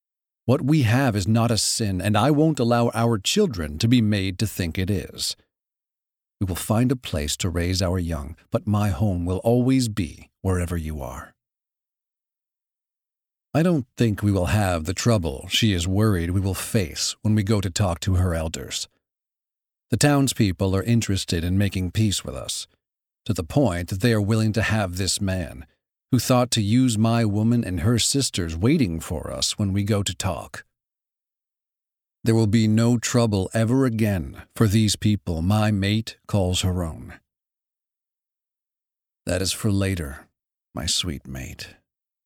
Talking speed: 170 wpm